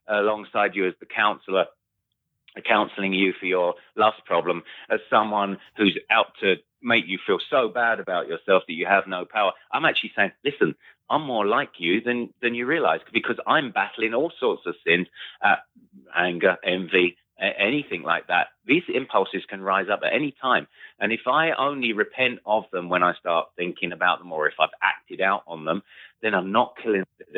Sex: male